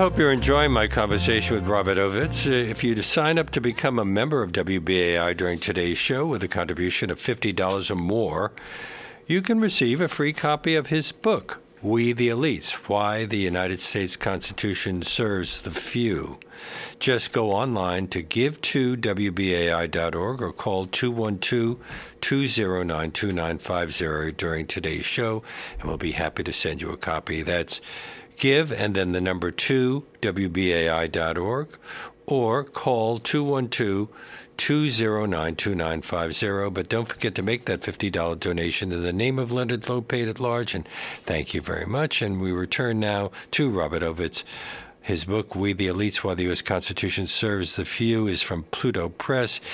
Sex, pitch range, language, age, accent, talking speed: male, 90-120 Hz, English, 50-69, American, 150 wpm